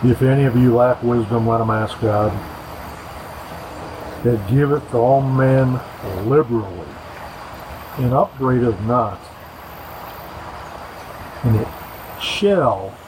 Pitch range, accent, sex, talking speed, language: 110-135 Hz, American, male, 95 wpm, English